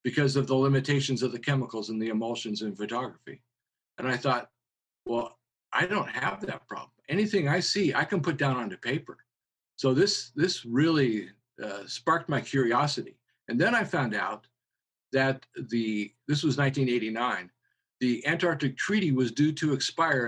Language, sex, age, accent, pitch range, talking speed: English, male, 50-69, American, 130-165 Hz, 165 wpm